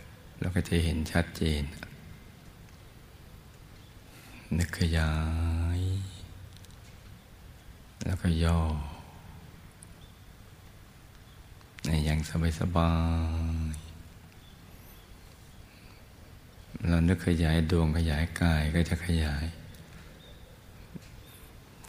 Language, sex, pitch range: Thai, male, 80-95 Hz